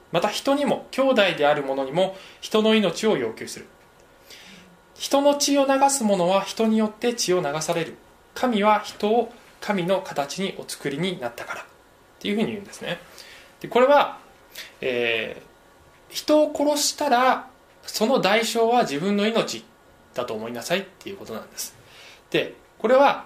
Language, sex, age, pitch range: Japanese, male, 20-39, 170-245 Hz